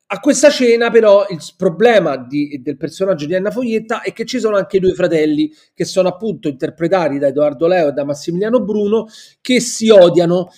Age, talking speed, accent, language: 40-59, 195 wpm, native, Italian